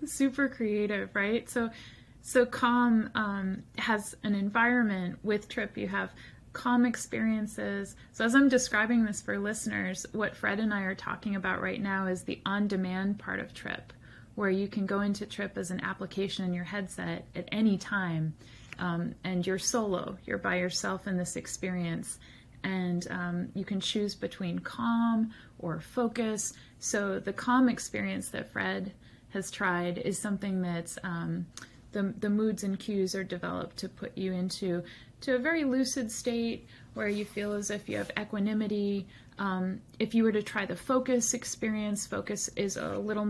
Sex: female